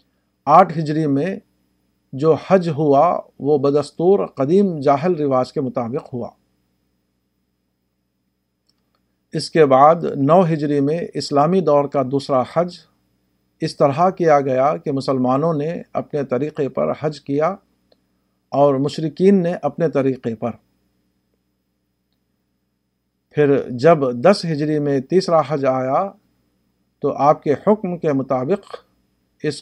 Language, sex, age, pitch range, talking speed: Urdu, male, 50-69, 115-155 Hz, 120 wpm